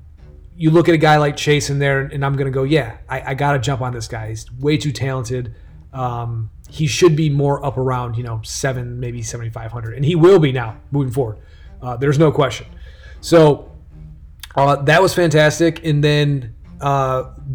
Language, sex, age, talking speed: English, male, 30-49, 200 wpm